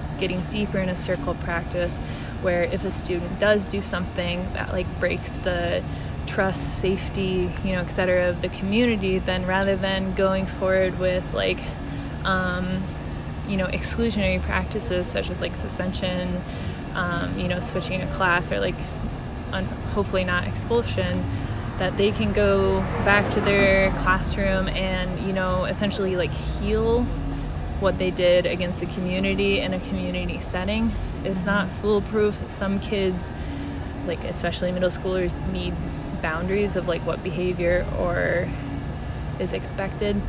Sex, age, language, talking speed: female, 20-39, English, 140 wpm